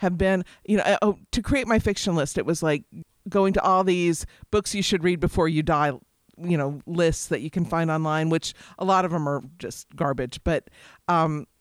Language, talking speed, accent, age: English, 215 wpm, American, 50-69